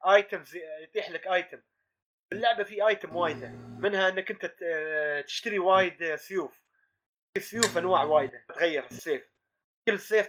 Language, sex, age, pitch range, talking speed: Arabic, male, 20-39, 165-220 Hz, 120 wpm